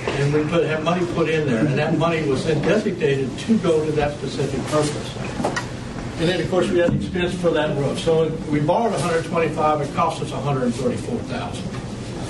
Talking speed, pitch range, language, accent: 190 wpm, 145-180 Hz, English, American